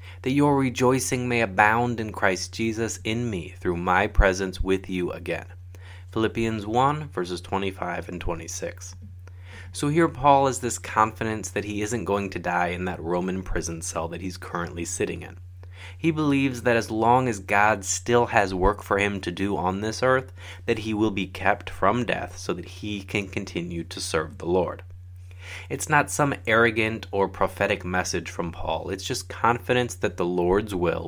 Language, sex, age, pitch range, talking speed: English, male, 20-39, 90-110 Hz, 180 wpm